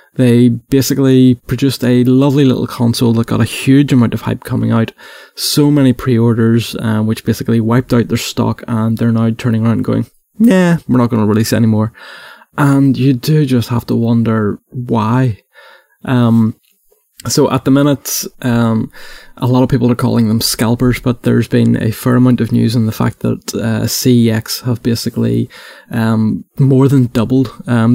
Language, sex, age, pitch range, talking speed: English, male, 20-39, 110-125 Hz, 180 wpm